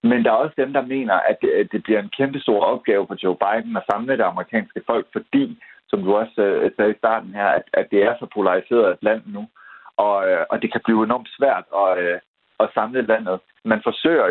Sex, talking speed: male, 215 wpm